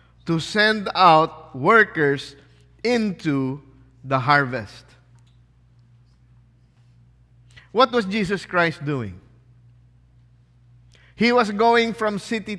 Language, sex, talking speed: English, male, 75 wpm